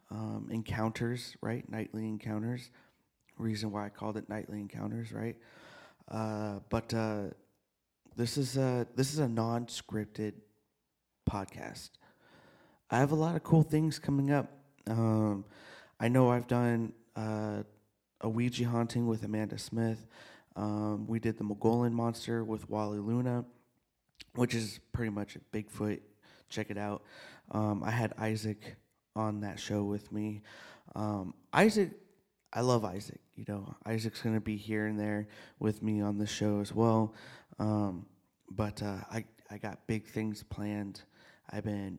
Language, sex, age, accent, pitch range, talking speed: English, male, 30-49, American, 105-120 Hz, 150 wpm